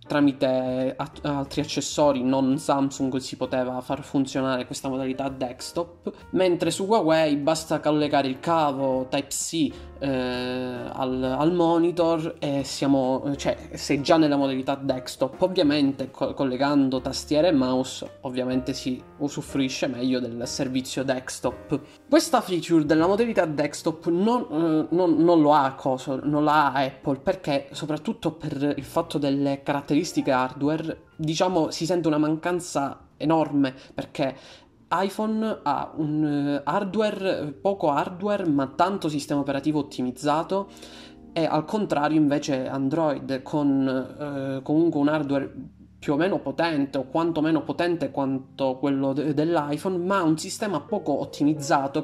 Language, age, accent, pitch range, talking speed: Italian, 20-39, native, 135-165 Hz, 125 wpm